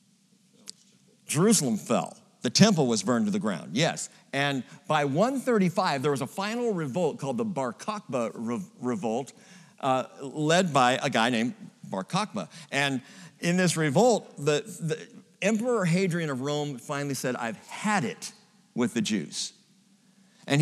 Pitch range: 145-210 Hz